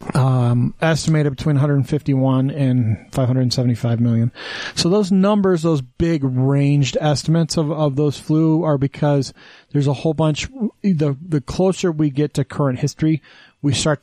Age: 40-59